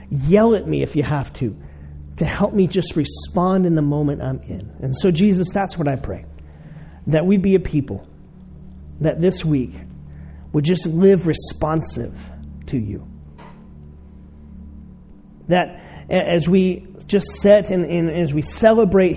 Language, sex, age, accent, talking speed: English, male, 40-59, American, 155 wpm